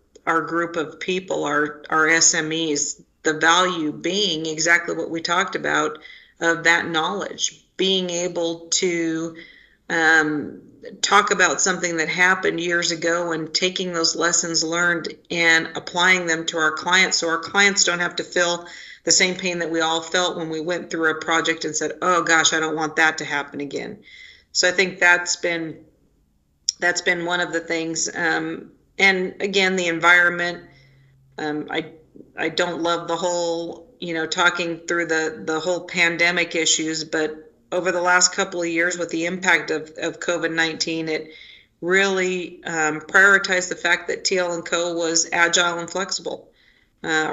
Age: 40-59